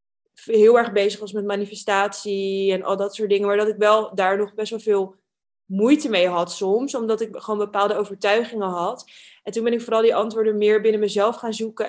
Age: 20-39